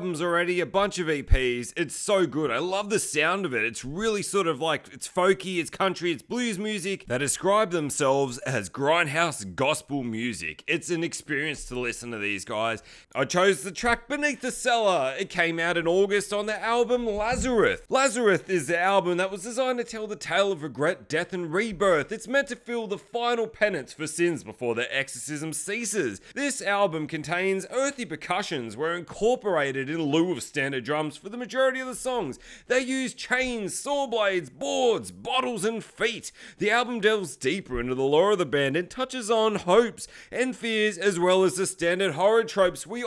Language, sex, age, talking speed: English, male, 30-49, 190 wpm